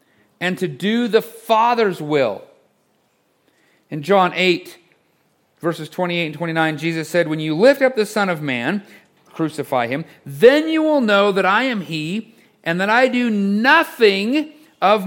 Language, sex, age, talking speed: English, male, 40-59, 155 wpm